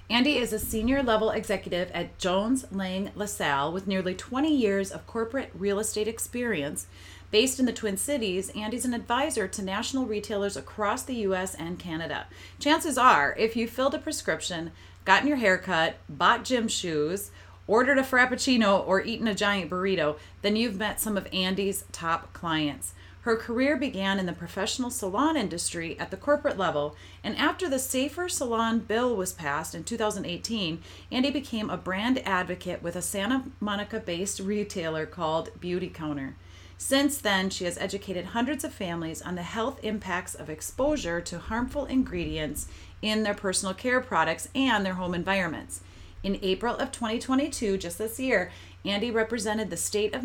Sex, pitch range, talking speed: female, 175-240 Hz, 165 wpm